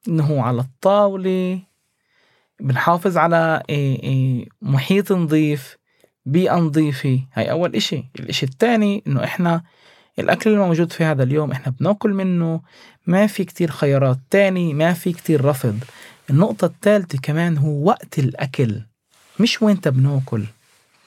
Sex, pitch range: male, 135-190 Hz